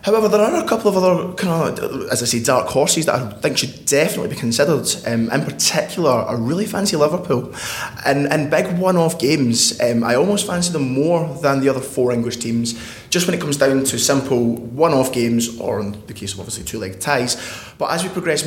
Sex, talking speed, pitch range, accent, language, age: male, 220 wpm, 115-135 Hz, British, English, 20-39